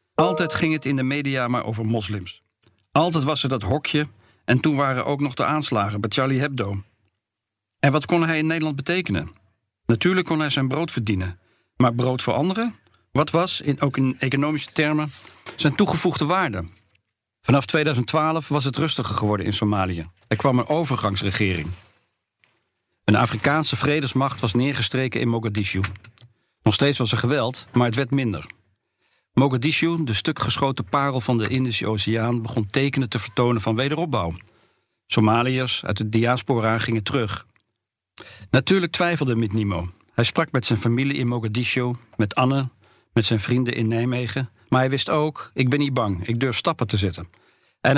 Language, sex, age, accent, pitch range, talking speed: Dutch, male, 50-69, Dutch, 110-140 Hz, 165 wpm